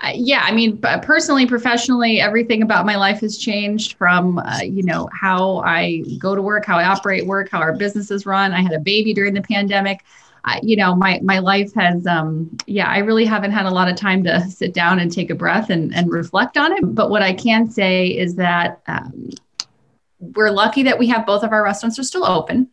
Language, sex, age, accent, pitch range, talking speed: English, female, 20-39, American, 170-215 Hz, 220 wpm